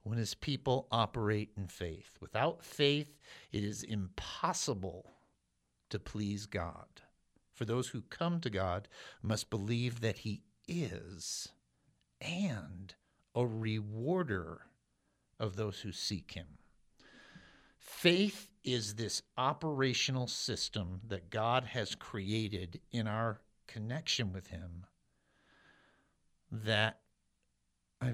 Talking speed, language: 100 wpm, English